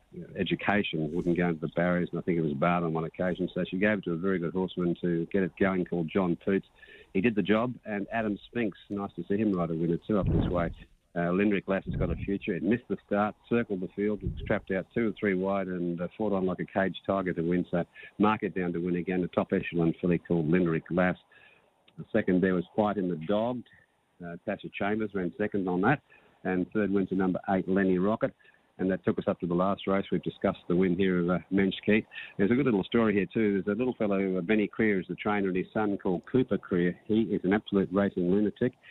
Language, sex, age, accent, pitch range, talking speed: English, male, 50-69, Australian, 90-100 Hz, 250 wpm